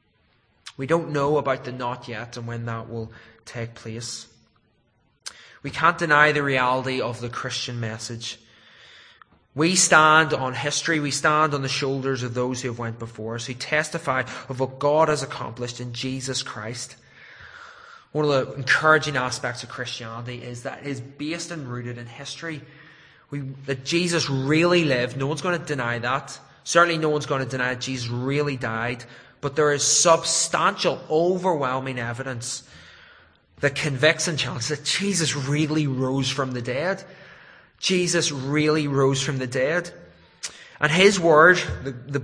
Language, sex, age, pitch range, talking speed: English, male, 20-39, 125-155 Hz, 160 wpm